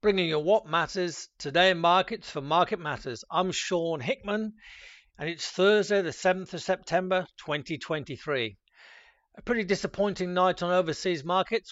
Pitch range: 165-205 Hz